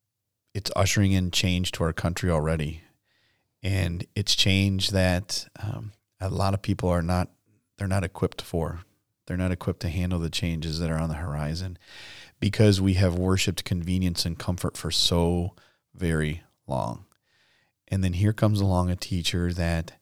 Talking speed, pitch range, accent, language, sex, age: 160 wpm, 85-105 Hz, American, English, male, 40-59